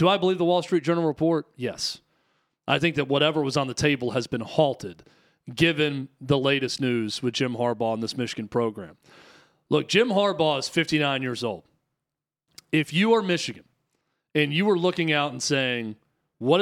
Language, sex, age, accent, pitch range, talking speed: English, male, 40-59, American, 140-180 Hz, 180 wpm